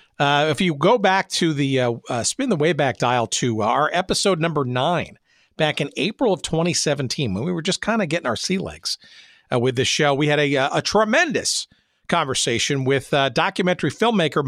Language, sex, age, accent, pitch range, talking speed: English, male, 50-69, American, 135-190 Hz, 205 wpm